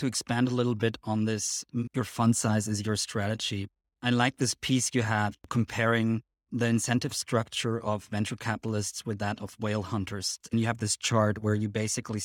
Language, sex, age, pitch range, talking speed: English, male, 20-39, 105-120 Hz, 185 wpm